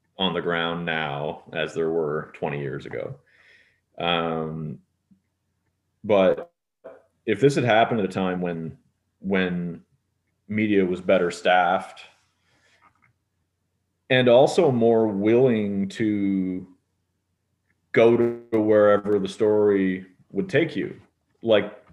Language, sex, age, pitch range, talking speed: English, male, 30-49, 90-135 Hz, 105 wpm